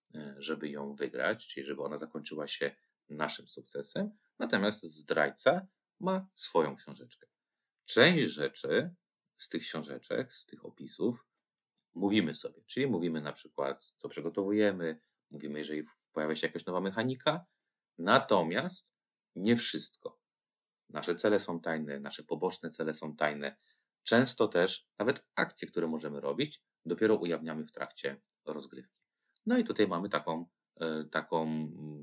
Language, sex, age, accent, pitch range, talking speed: Polish, male, 30-49, native, 75-110 Hz, 125 wpm